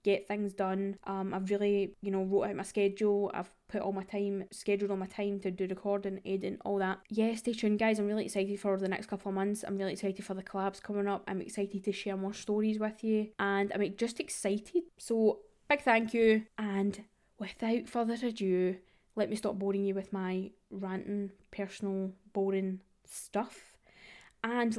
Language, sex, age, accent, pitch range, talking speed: English, female, 10-29, British, 195-220 Hz, 195 wpm